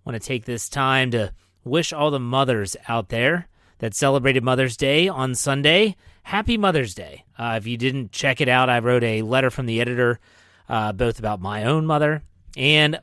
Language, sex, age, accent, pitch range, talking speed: English, male, 30-49, American, 115-150 Hz, 200 wpm